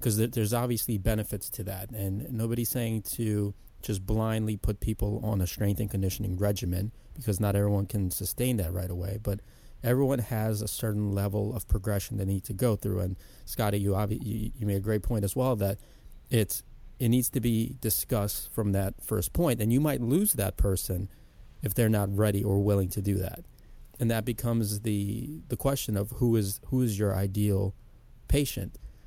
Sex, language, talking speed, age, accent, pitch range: male, English, 190 wpm, 30-49, American, 100-120 Hz